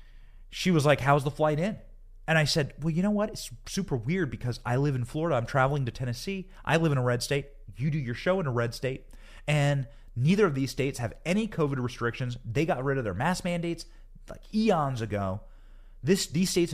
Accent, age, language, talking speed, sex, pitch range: American, 30-49, English, 220 wpm, male, 120-185 Hz